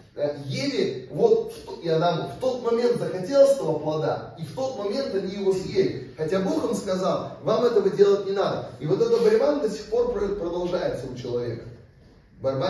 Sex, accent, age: male, native, 30-49